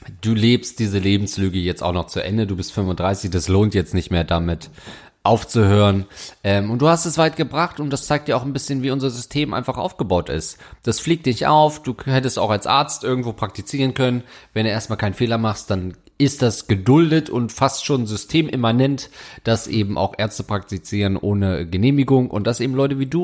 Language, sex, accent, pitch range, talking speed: German, male, German, 105-140 Hz, 200 wpm